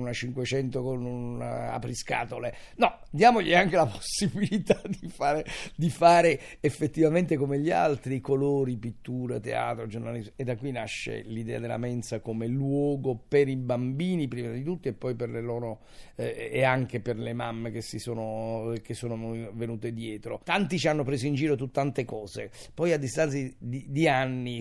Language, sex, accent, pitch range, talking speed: Italian, male, native, 115-140 Hz, 165 wpm